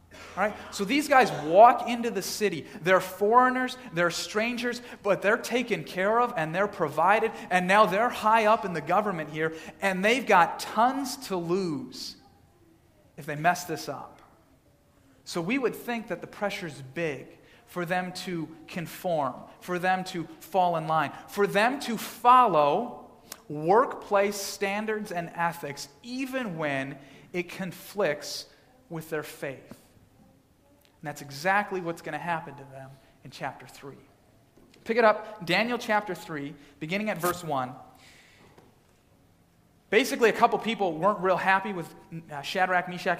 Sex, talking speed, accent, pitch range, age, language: male, 145 wpm, American, 160-210 Hz, 40-59, English